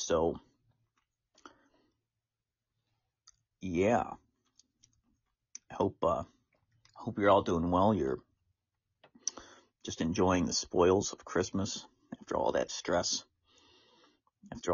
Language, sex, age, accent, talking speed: English, male, 50-69, American, 95 wpm